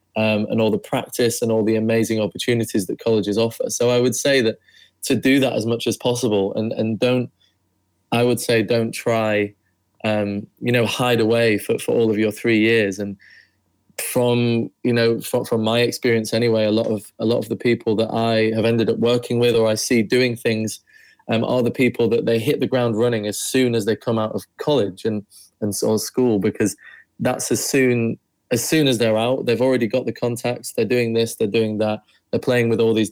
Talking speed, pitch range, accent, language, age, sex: 220 wpm, 110-120 Hz, British, English, 20-39, male